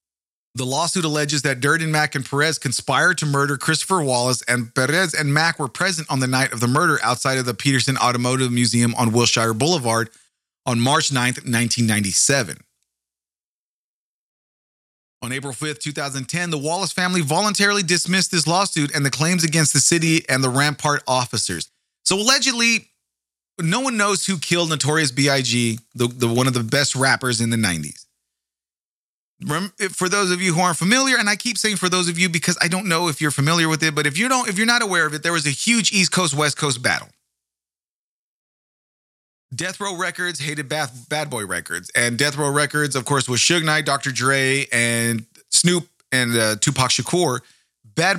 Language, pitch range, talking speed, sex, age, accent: English, 120-170 Hz, 180 wpm, male, 30-49, American